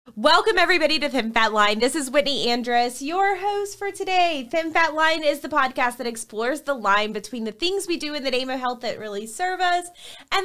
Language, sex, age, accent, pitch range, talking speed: English, female, 20-39, American, 210-285 Hz, 225 wpm